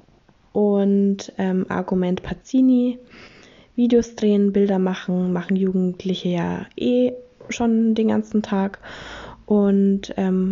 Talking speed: 105 wpm